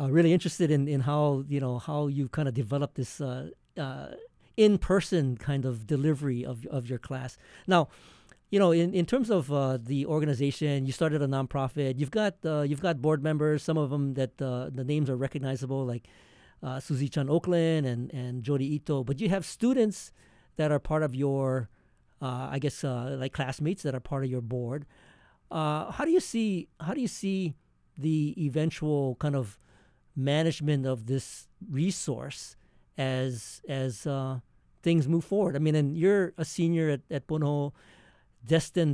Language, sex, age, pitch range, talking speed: English, male, 50-69, 135-160 Hz, 180 wpm